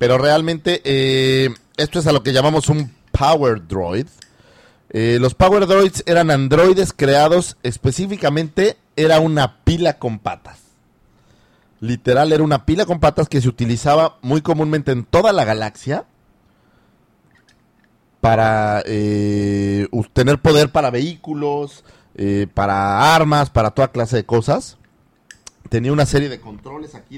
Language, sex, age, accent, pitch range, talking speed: Spanish, male, 40-59, Mexican, 110-155 Hz, 130 wpm